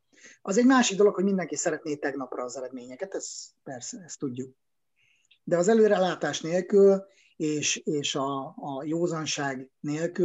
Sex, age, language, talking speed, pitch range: male, 30-49, Hungarian, 140 wpm, 135-175 Hz